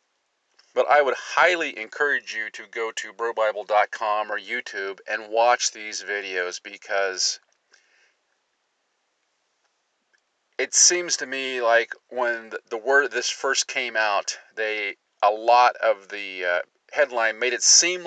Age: 40-59